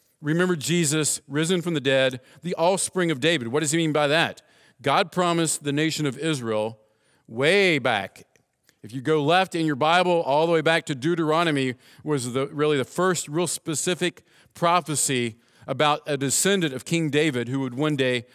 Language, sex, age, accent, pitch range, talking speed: English, male, 50-69, American, 140-175 Hz, 175 wpm